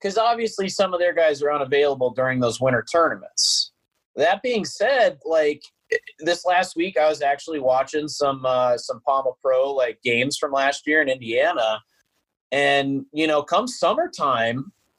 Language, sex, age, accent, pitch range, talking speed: English, male, 30-49, American, 130-195 Hz, 160 wpm